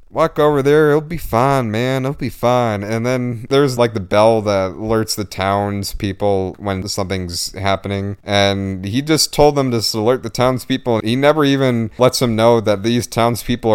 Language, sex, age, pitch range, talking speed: English, male, 30-49, 105-130 Hz, 180 wpm